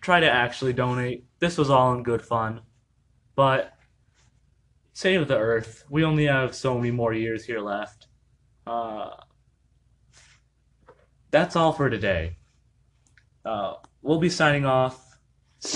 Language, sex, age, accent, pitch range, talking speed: English, male, 20-39, American, 115-140 Hz, 130 wpm